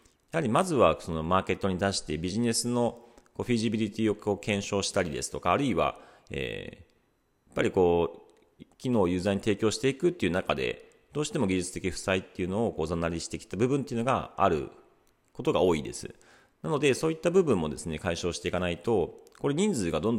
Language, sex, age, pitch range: Japanese, male, 40-59, 85-125 Hz